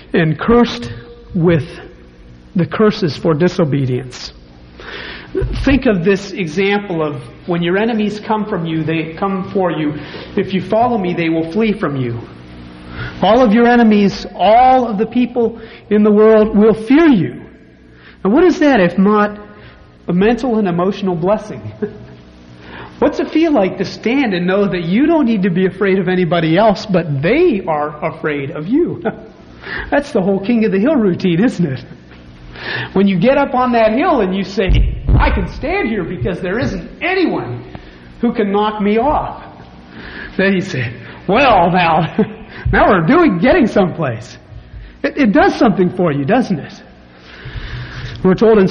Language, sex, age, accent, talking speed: English, male, 40-59, American, 165 wpm